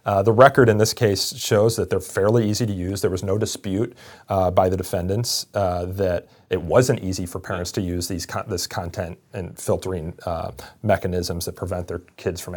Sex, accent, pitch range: male, American, 95-115 Hz